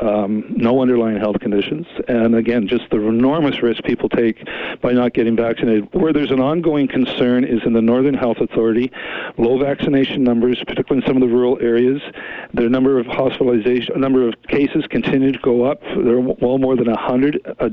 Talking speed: 190 wpm